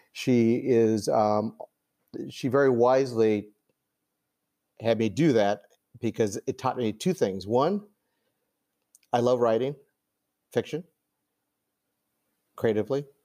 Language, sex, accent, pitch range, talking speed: English, male, American, 105-135 Hz, 100 wpm